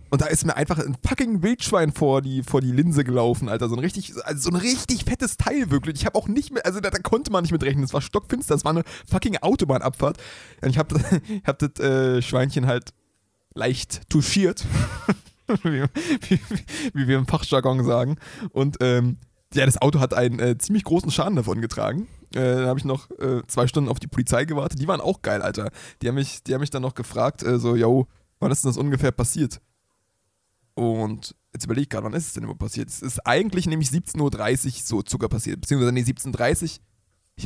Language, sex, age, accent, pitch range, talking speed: German, male, 20-39, German, 120-155 Hz, 220 wpm